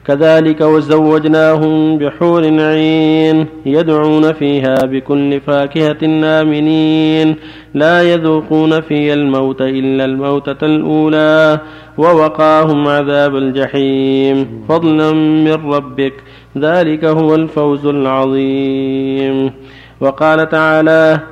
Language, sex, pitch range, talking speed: Arabic, male, 135-160 Hz, 80 wpm